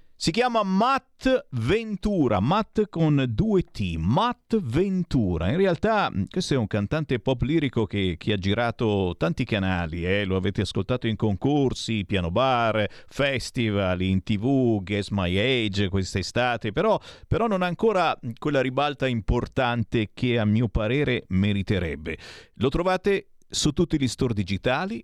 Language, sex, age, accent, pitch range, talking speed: Italian, male, 50-69, native, 105-170 Hz, 145 wpm